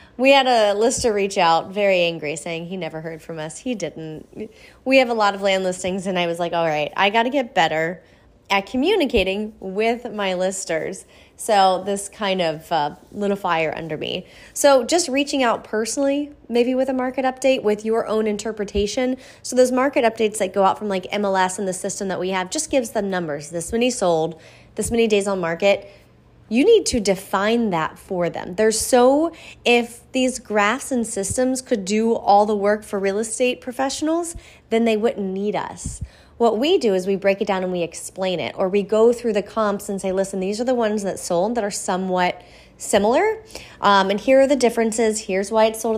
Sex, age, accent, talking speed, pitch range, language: female, 20-39, American, 210 wpm, 185-235 Hz, English